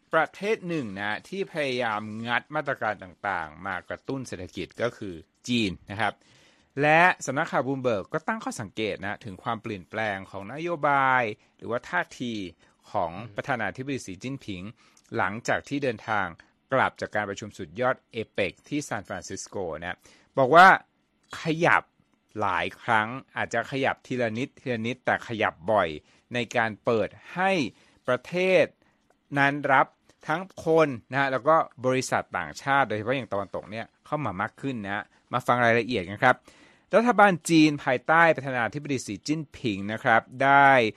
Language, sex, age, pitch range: Thai, male, 60-79, 105-145 Hz